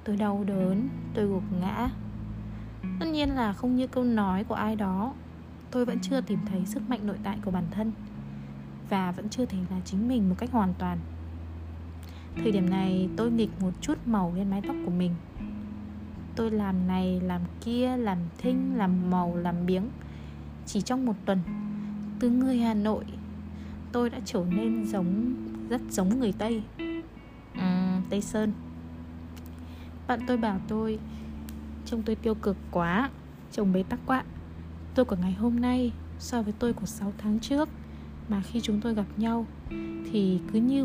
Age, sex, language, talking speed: 20-39, female, Vietnamese, 170 wpm